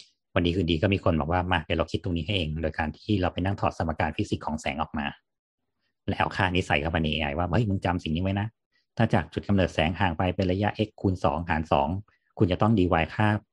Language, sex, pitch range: Thai, male, 80-100 Hz